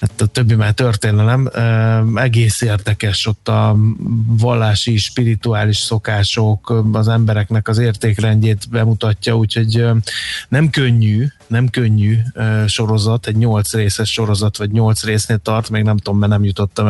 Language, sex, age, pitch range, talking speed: Hungarian, male, 20-39, 105-115 Hz, 130 wpm